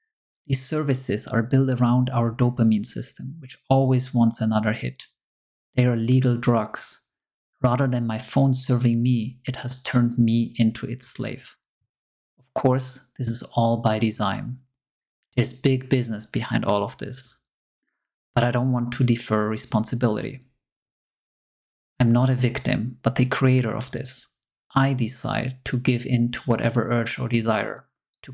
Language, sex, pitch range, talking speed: English, male, 120-130 Hz, 150 wpm